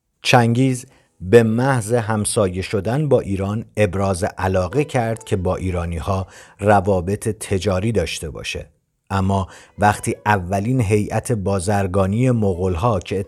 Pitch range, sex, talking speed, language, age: 90-115 Hz, male, 110 wpm, Persian, 50-69